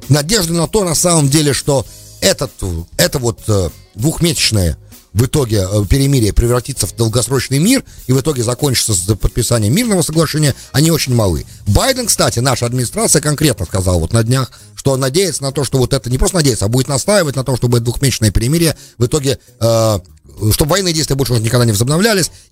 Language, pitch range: English, 105-155 Hz